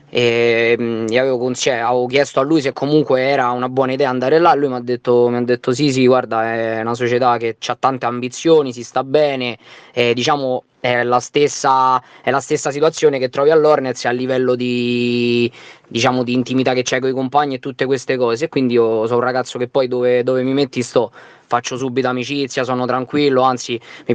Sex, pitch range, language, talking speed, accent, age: male, 120-135 Hz, Italian, 205 wpm, native, 20-39